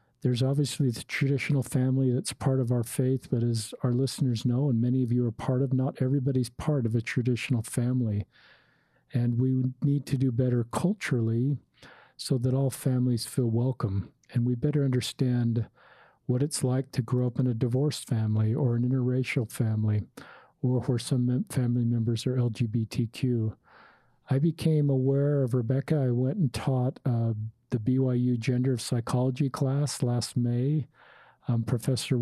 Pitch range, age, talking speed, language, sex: 120-135 Hz, 50-69, 160 wpm, English, male